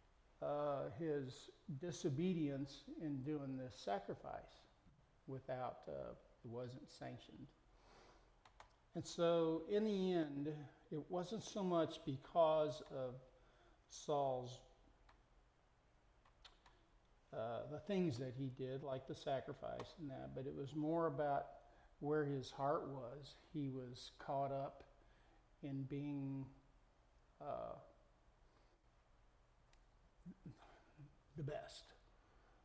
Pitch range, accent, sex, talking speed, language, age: 135-160 Hz, American, male, 95 wpm, English, 50-69